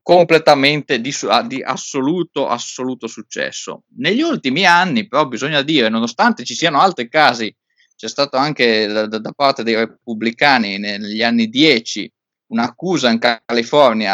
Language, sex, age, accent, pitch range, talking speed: Italian, male, 20-39, native, 115-140 Hz, 135 wpm